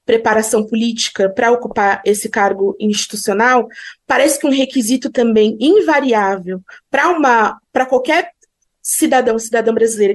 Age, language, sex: 20-39, Portuguese, female